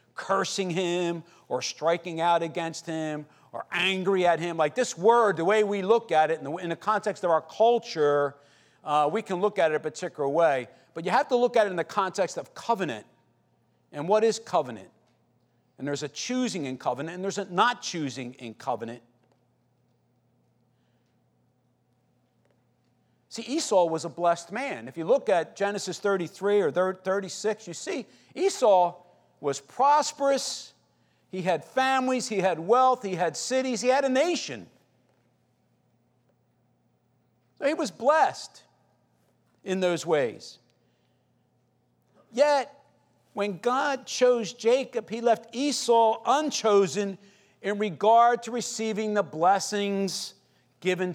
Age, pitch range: 40-59, 155-230 Hz